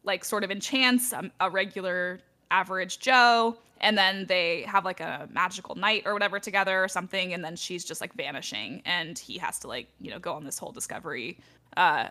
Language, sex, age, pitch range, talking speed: English, female, 10-29, 190-250 Hz, 210 wpm